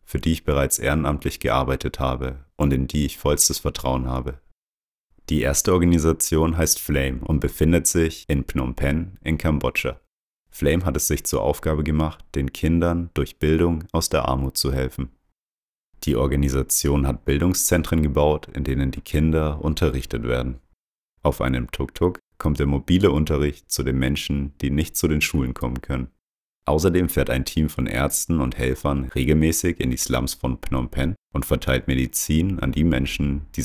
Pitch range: 65-80 Hz